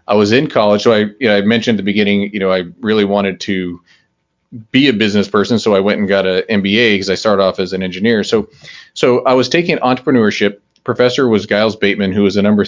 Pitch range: 100-125 Hz